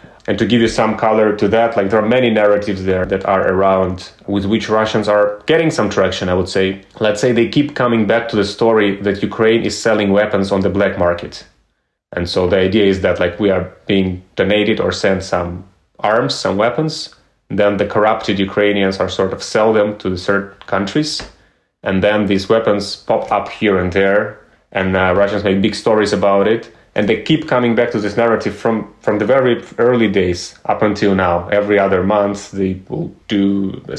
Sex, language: male, English